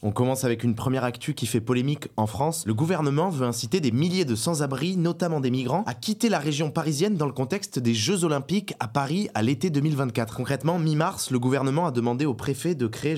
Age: 20-39